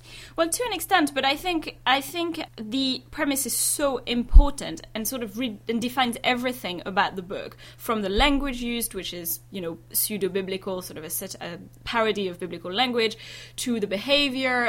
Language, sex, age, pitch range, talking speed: English, female, 20-39, 190-250 Hz, 175 wpm